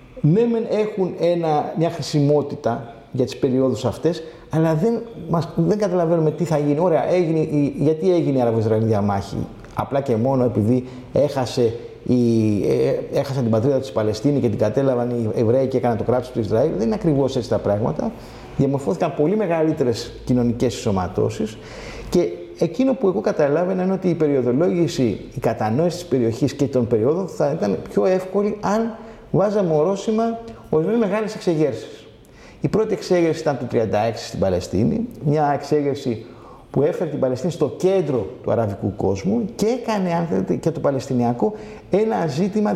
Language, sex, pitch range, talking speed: Greek, male, 125-180 Hz, 150 wpm